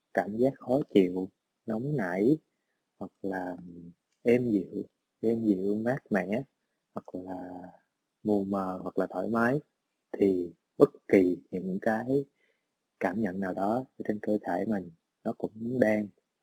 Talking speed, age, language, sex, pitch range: 140 wpm, 20-39, Vietnamese, male, 95-115 Hz